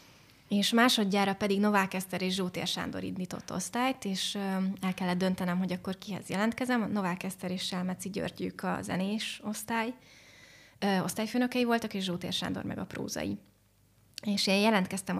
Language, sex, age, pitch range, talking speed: Hungarian, female, 20-39, 190-220 Hz, 145 wpm